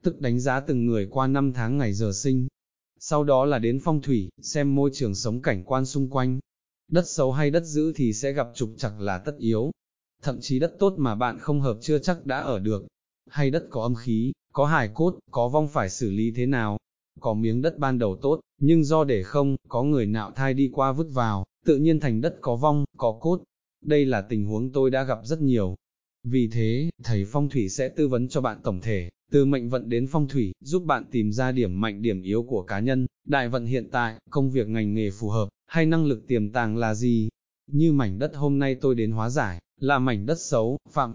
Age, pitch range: 20-39, 115-145 Hz